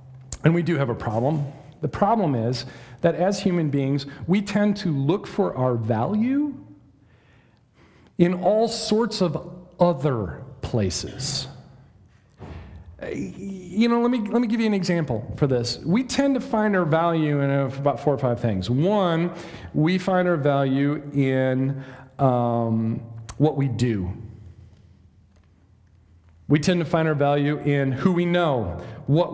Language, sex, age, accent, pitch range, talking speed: English, male, 40-59, American, 130-195 Hz, 145 wpm